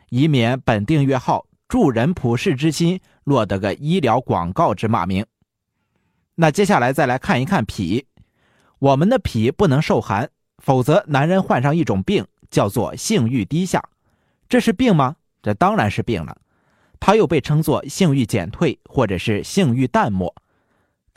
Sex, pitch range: male, 115-170 Hz